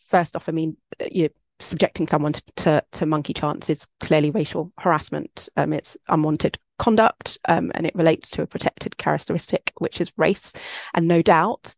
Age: 20-39